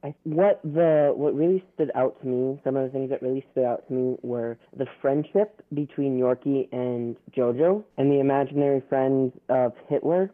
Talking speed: 180 wpm